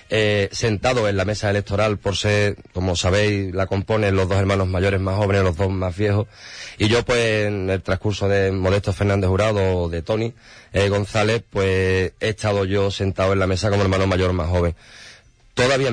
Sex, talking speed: male, 190 wpm